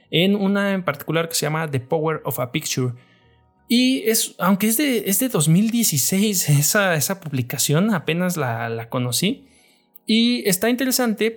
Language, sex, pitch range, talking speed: Spanish, male, 130-185 Hz, 160 wpm